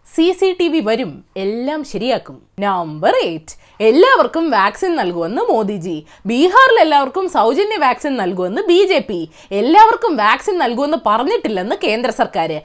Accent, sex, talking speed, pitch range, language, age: native, female, 55 wpm, 225-330 Hz, Malayalam, 20-39